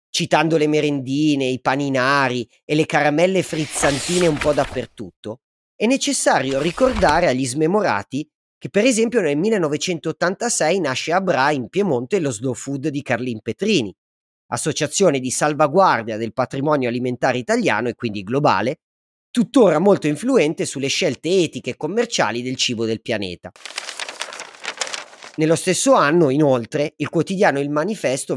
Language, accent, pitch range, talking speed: Italian, native, 130-185 Hz, 135 wpm